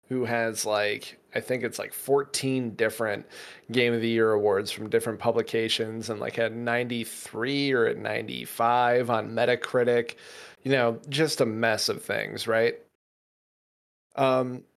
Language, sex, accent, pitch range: English, male, American, 115-135 Hz